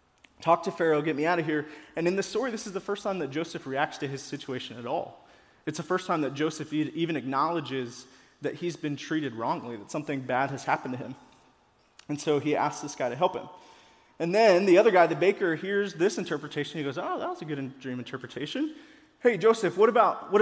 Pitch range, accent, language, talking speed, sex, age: 140-185 Hz, American, English, 225 wpm, male, 20-39